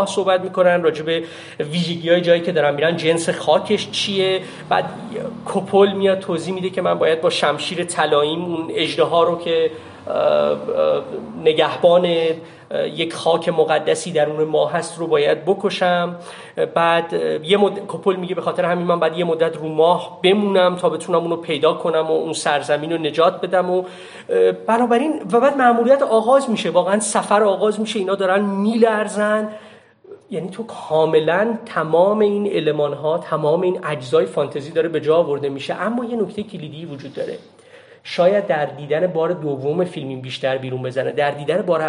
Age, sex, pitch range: 30-49, male, 160-205 Hz